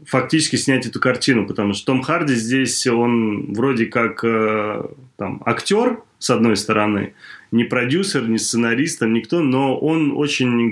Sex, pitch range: male, 105-130 Hz